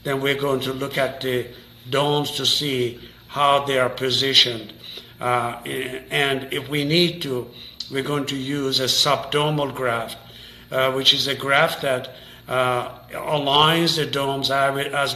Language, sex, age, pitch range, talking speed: English, male, 50-69, 125-140 Hz, 145 wpm